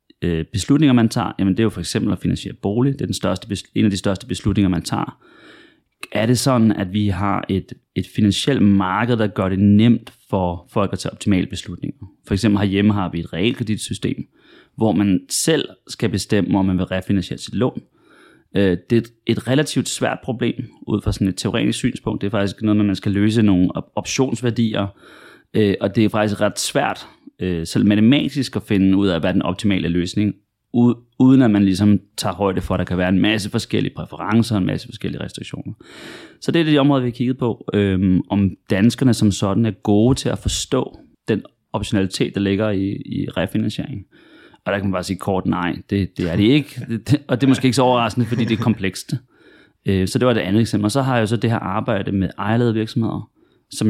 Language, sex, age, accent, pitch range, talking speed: Danish, male, 30-49, native, 95-115 Hz, 210 wpm